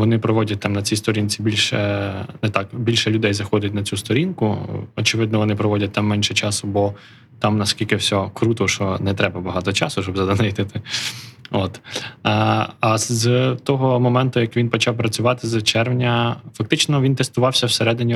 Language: Ukrainian